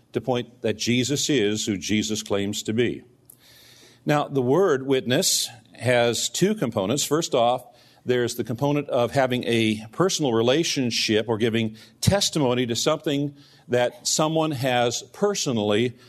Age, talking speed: 50-69, 135 wpm